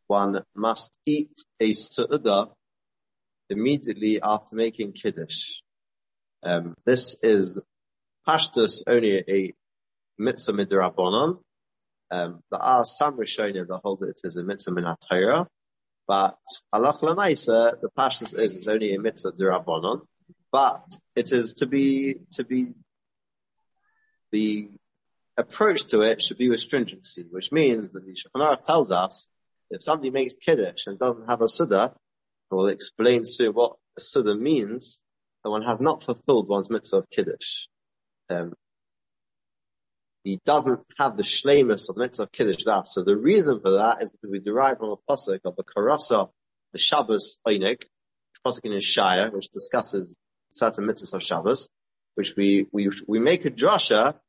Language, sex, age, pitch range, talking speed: English, male, 30-49, 100-150 Hz, 155 wpm